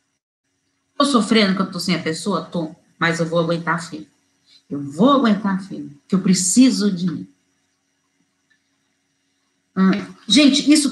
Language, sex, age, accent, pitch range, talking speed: Portuguese, female, 40-59, Brazilian, 155-215 Hz, 145 wpm